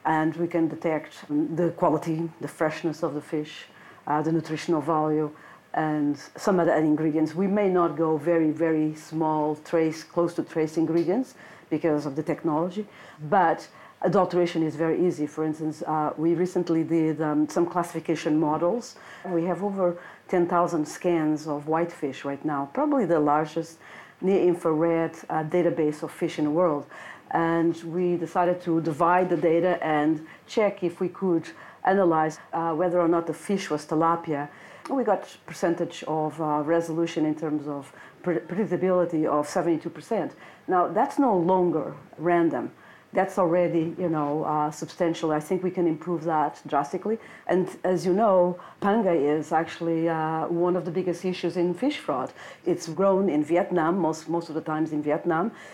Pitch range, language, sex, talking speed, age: 155-175 Hz, English, female, 160 wpm, 40-59